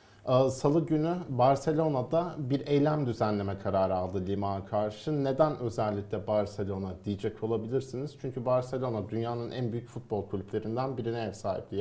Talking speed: 125 wpm